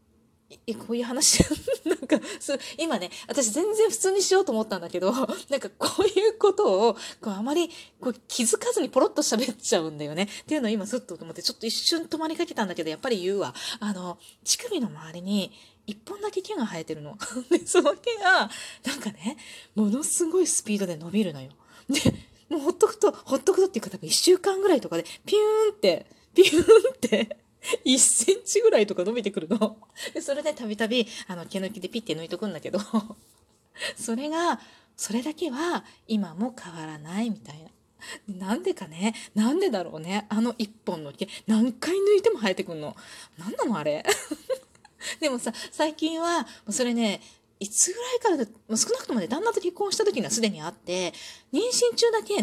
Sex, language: female, Japanese